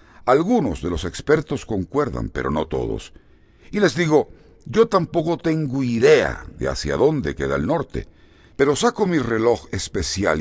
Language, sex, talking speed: Spanish, male, 150 wpm